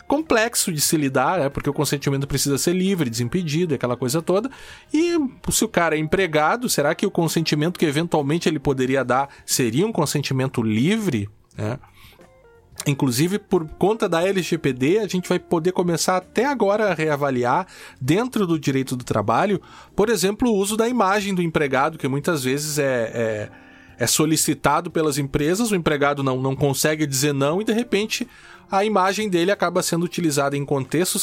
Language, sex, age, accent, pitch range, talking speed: Portuguese, male, 20-39, Brazilian, 130-185 Hz, 165 wpm